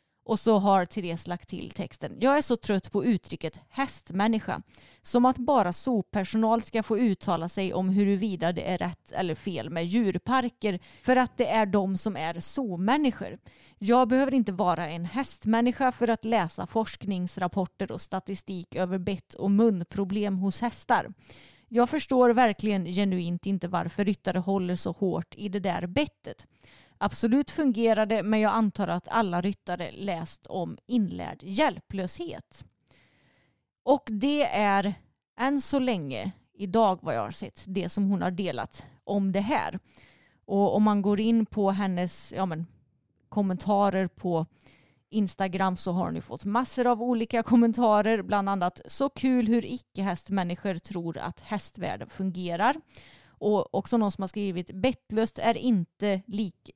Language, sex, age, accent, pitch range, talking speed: Swedish, female, 30-49, native, 185-230 Hz, 150 wpm